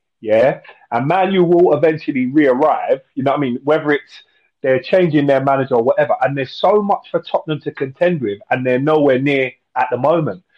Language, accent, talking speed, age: English, British, 200 wpm, 30-49